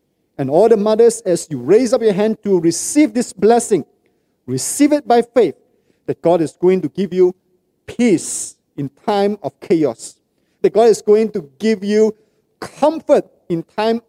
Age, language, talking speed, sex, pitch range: 50-69, English, 170 wpm, male, 170-225 Hz